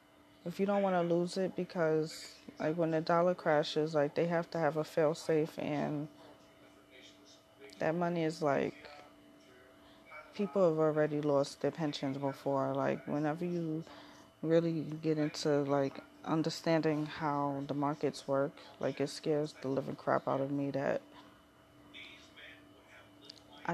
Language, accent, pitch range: English, American, 150-170 Hz